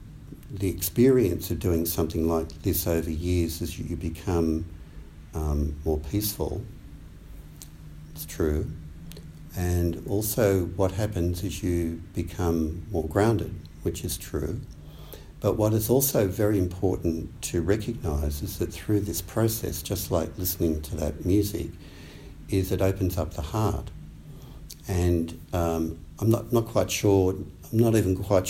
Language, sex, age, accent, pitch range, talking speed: English, male, 60-79, Australian, 80-100 Hz, 135 wpm